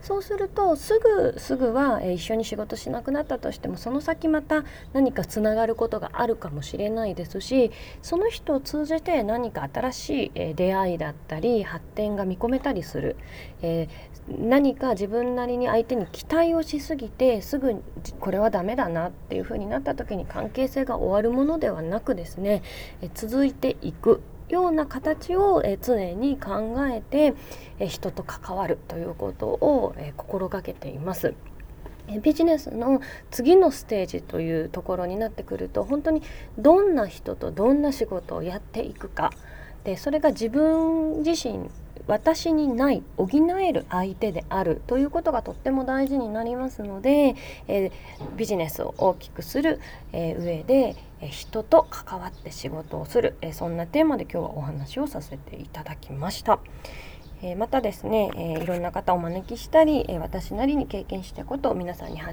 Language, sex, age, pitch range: Japanese, female, 20-39, 190-295 Hz